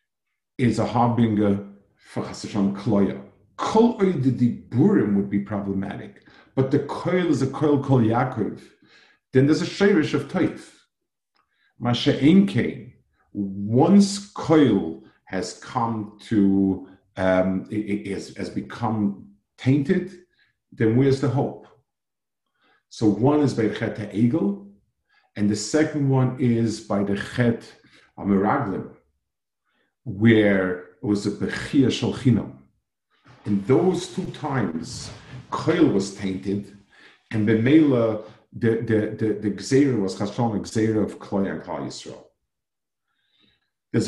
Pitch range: 100-130 Hz